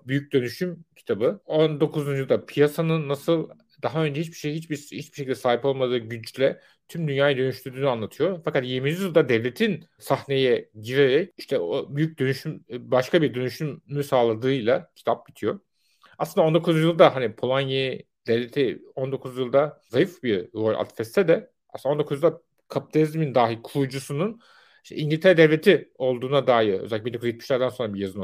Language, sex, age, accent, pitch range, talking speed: Turkish, male, 40-59, native, 125-155 Hz, 140 wpm